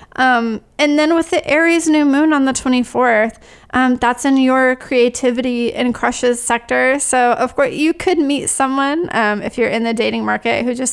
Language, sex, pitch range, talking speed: English, female, 225-275 Hz, 190 wpm